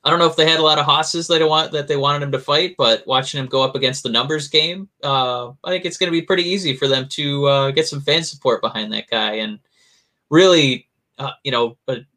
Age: 20-39